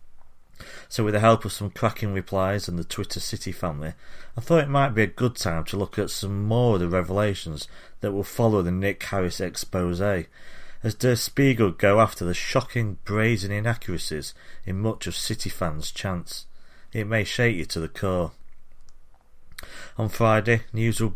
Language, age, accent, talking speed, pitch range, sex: English, 40-59, British, 175 wpm, 85-110 Hz, male